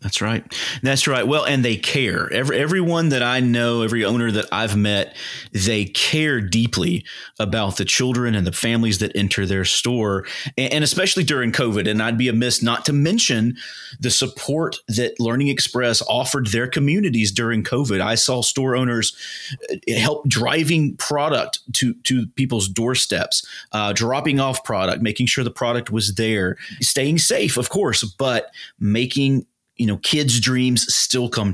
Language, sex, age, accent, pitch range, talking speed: English, male, 30-49, American, 110-130 Hz, 165 wpm